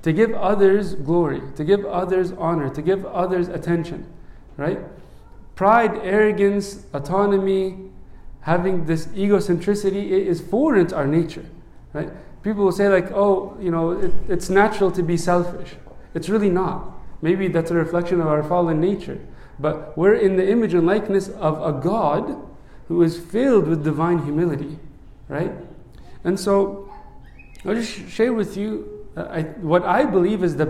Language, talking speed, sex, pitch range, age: English, 160 wpm, male, 160-200 Hz, 40-59